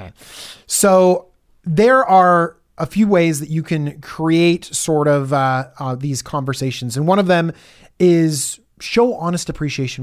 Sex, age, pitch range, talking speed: male, 30-49, 145-210 Hz, 145 wpm